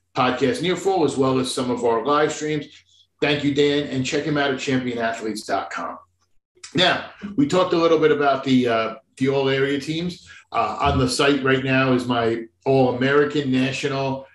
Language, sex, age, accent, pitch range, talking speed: English, male, 50-69, American, 130-165 Hz, 180 wpm